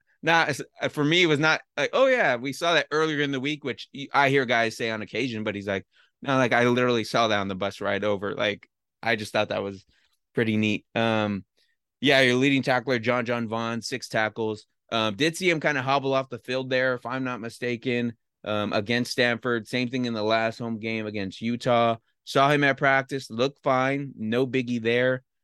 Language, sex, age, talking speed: English, male, 20-39, 215 wpm